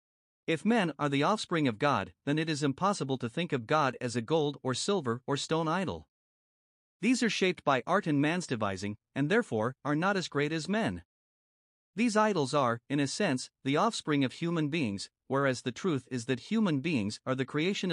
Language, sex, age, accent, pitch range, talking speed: English, male, 50-69, American, 125-165 Hz, 200 wpm